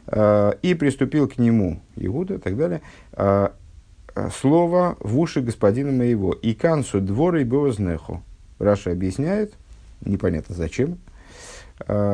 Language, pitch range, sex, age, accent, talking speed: Russian, 95-125 Hz, male, 50-69, native, 125 wpm